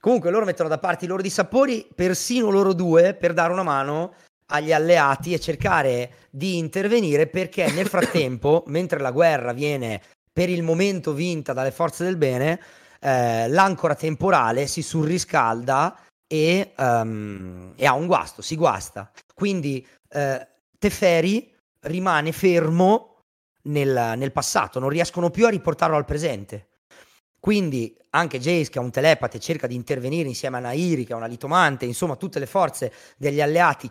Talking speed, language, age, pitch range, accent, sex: 150 wpm, Italian, 30-49, 130-175 Hz, native, male